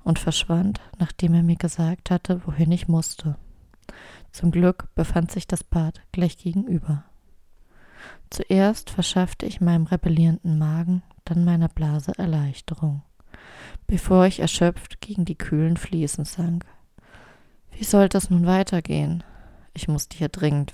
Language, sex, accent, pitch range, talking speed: German, female, German, 155-180 Hz, 130 wpm